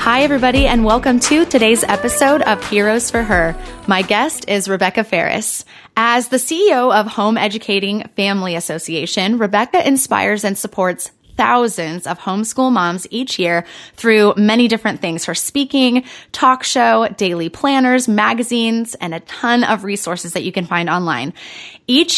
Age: 20-39